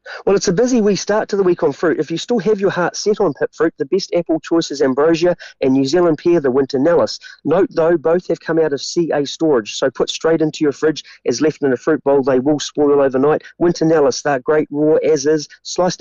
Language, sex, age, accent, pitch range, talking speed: English, male, 30-49, Australian, 150-180 Hz, 250 wpm